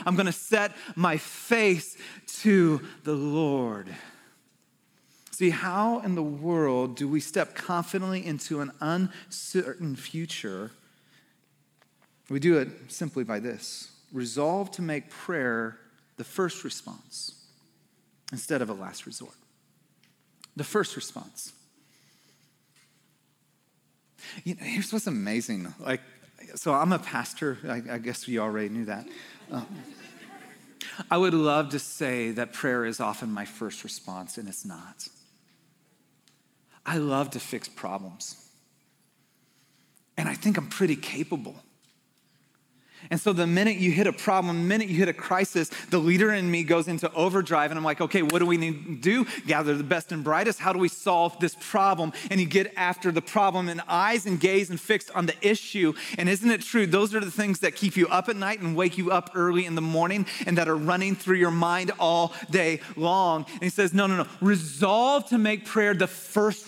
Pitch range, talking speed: 155-195 Hz, 170 wpm